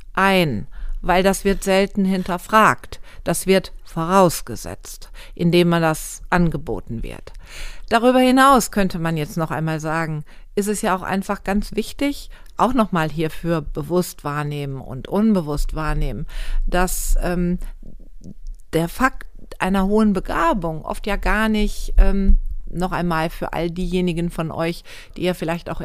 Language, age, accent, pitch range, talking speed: German, 50-69, German, 160-200 Hz, 140 wpm